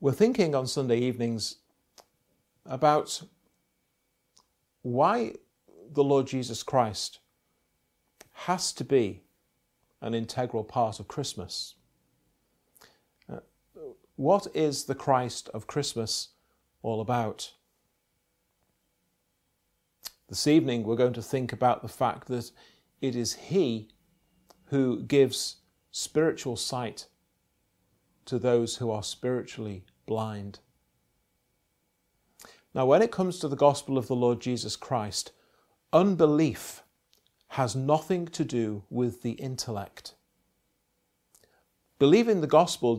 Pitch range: 110-145 Hz